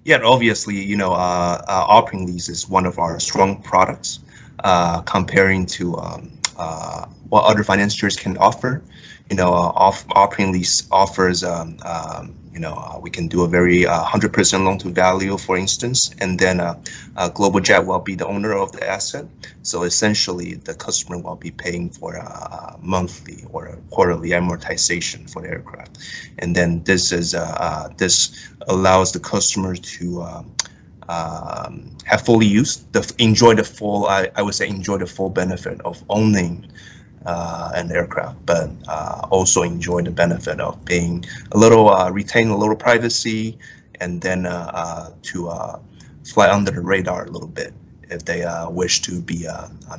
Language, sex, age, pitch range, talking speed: English, male, 20-39, 90-100 Hz, 175 wpm